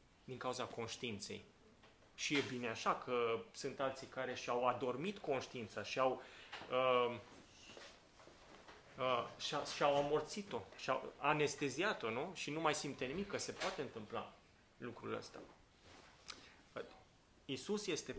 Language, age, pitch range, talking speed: Romanian, 30-49, 125-150 Hz, 120 wpm